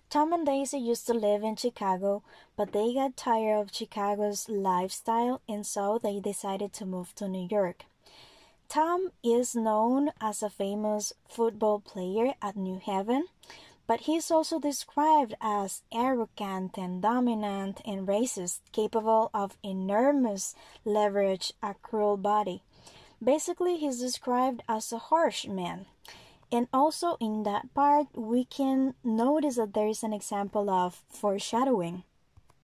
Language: English